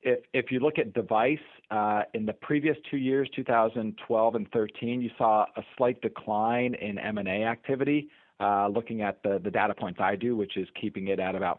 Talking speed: 195 wpm